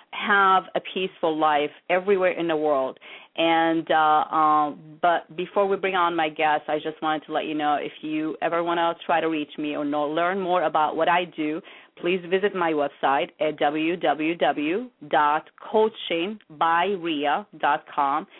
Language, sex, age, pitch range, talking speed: English, female, 30-49, 155-195 Hz, 155 wpm